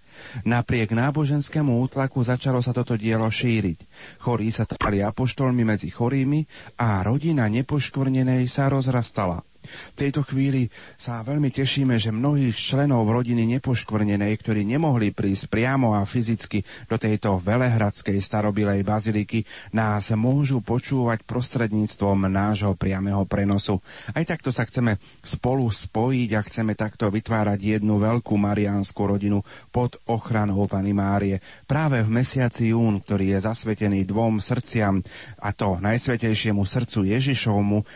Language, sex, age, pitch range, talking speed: Slovak, male, 30-49, 105-125 Hz, 125 wpm